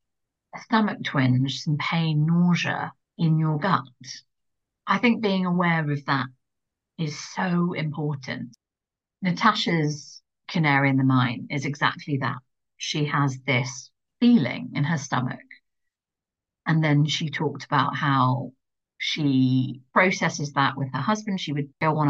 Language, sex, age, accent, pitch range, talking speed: English, female, 50-69, British, 140-175 Hz, 135 wpm